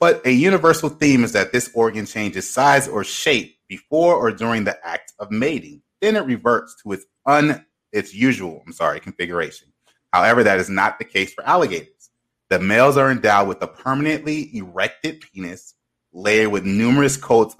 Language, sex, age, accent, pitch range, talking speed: English, male, 30-49, American, 95-130 Hz, 170 wpm